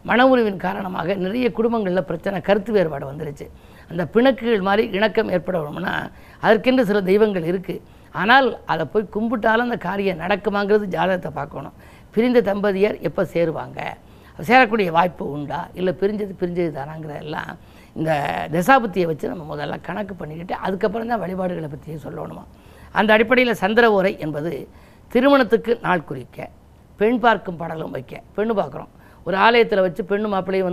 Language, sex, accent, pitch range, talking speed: Tamil, female, native, 175-215 Hz, 135 wpm